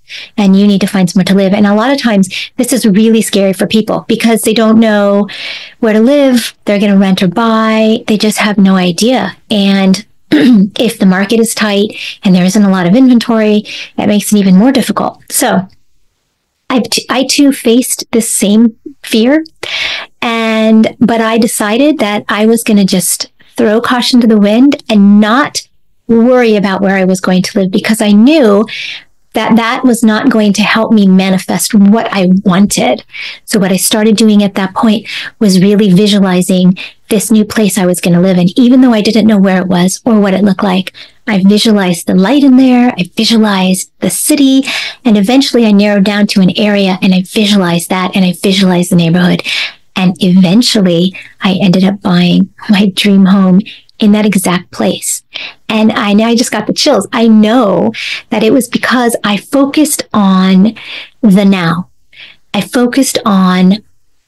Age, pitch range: 40-59, 195-230 Hz